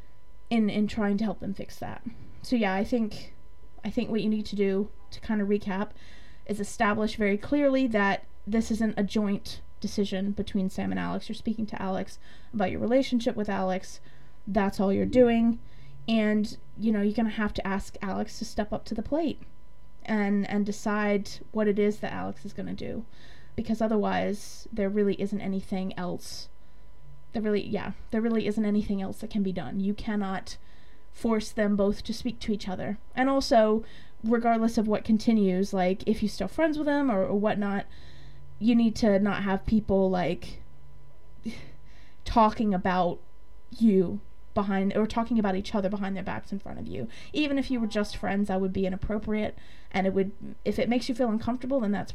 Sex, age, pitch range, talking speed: female, 20-39, 195-225 Hz, 190 wpm